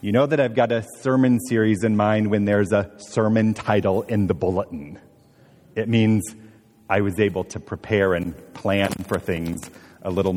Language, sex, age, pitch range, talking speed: English, male, 40-59, 105-130 Hz, 180 wpm